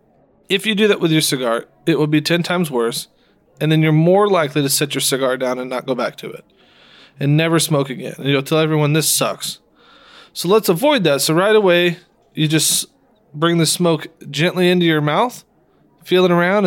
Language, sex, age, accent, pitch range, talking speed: English, male, 20-39, American, 145-180 Hz, 205 wpm